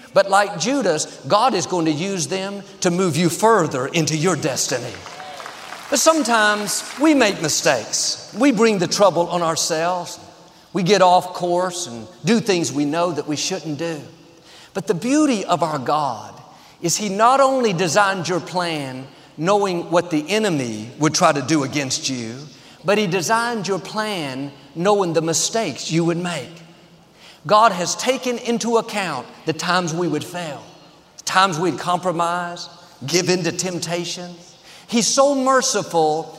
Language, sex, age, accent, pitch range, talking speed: English, male, 50-69, American, 165-210 Hz, 155 wpm